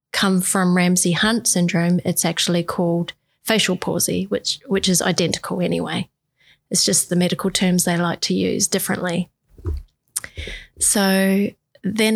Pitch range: 180-200 Hz